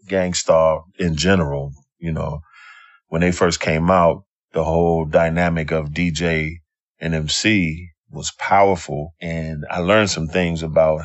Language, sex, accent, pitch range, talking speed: English, male, American, 80-95 Hz, 135 wpm